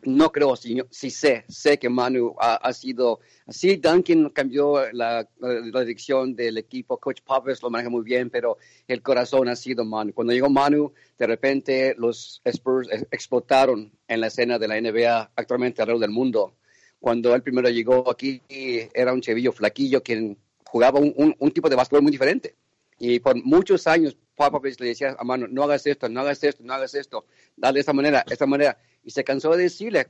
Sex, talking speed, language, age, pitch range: male, 205 wpm, Spanish, 50-69, 120-145 Hz